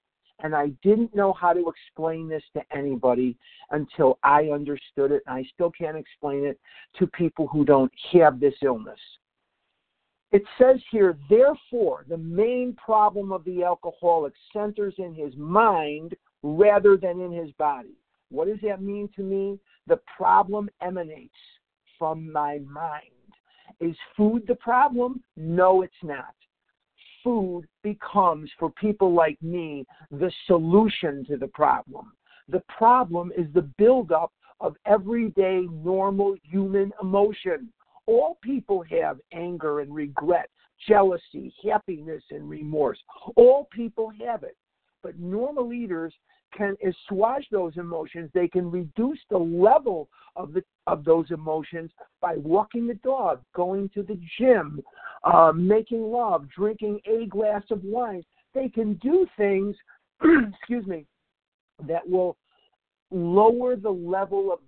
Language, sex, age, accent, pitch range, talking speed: English, male, 50-69, American, 165-220 Hz, 135 wpm